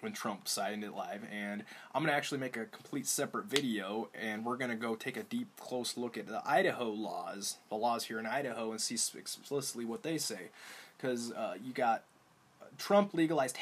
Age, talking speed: 20-39, 195 wpm